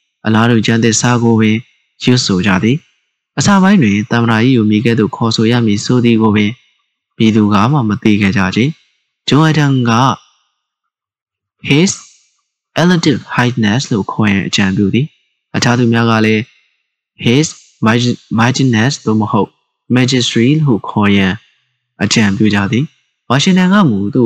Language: English